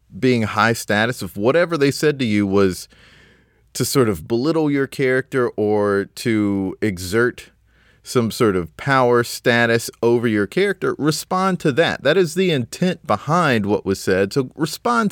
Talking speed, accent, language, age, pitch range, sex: 160 wpm, American, English, 30-49, 105-145 Hz, male